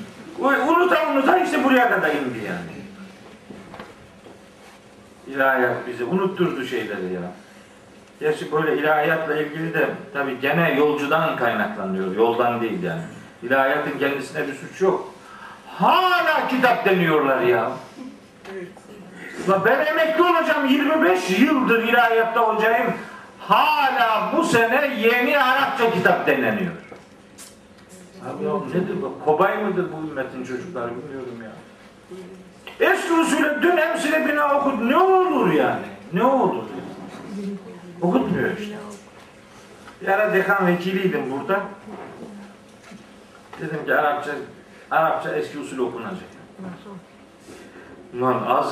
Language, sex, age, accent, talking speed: Turkish, male, 50-69, native, 110 wpm